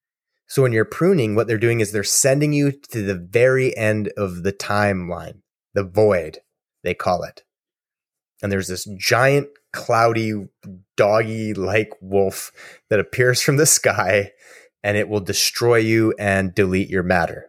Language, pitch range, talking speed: English, 95-120 Hz, 155 wpm